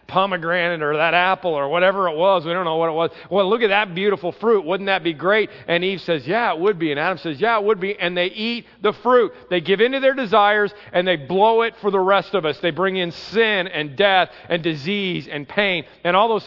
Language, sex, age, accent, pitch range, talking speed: English, male, 40-59, American, 175-250 Hz, 255 wpm